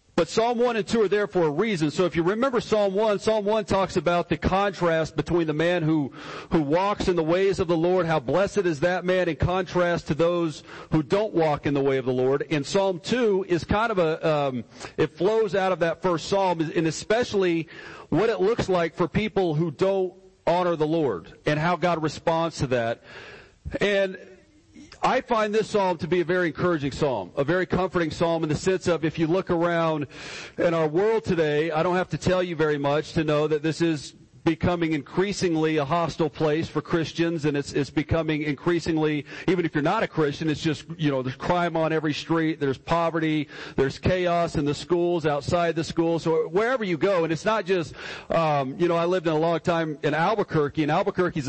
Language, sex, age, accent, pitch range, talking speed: English, male, 40-59, American, 155-185 Hz, 215 wpm